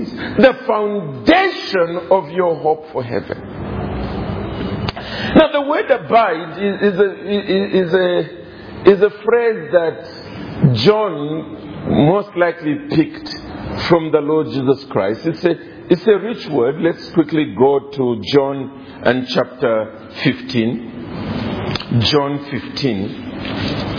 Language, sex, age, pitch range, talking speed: English, male, 50-69, 135-215 Hz, 115 wpm